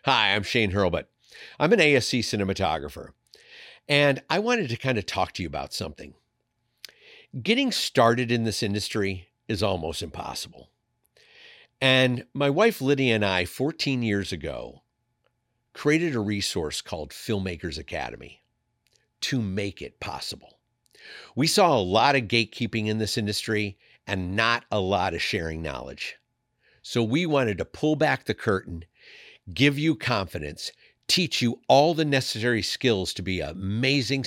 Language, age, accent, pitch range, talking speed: English, 50-69, American, 100-135 Hz, 145 wpm